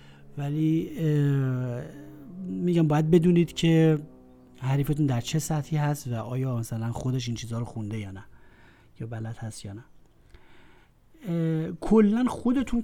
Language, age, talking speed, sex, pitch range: Persian, 30-49, 125 wpm, male, 115-150 Hz